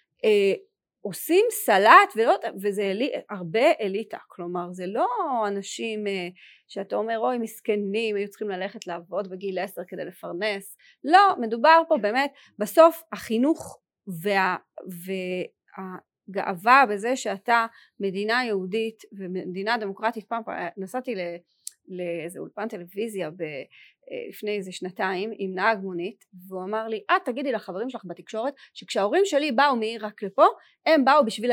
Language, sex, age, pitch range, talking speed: Hebrew, female, 30-49, 195-260 Hz, 130 wpm